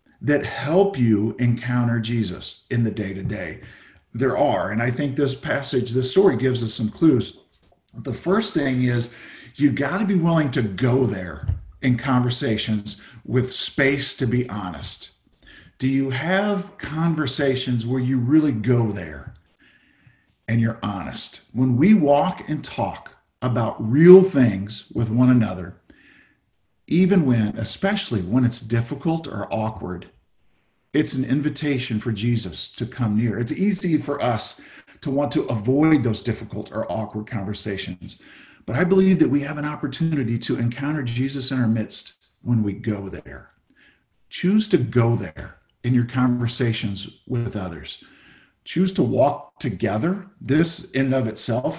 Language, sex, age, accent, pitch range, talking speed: English, male, 50-69, American, 110-140 Hz, 145 wpm